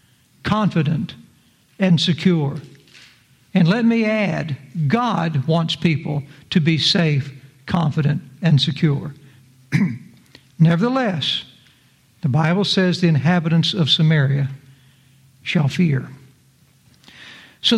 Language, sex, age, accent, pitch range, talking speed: English, male, 60-79, American, 145-195 Hz, 90 wpm